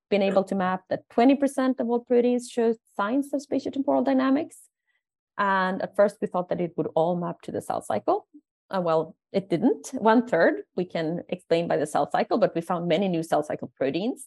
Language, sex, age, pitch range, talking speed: English, female, 30-49, 170-225 Hz, 205 wpm